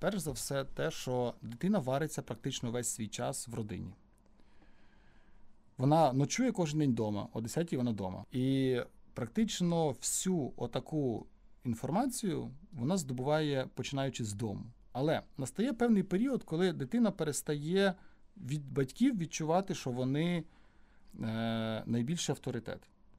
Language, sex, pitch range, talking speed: Ukrainian, male, 115-175 Hz, 120 wpm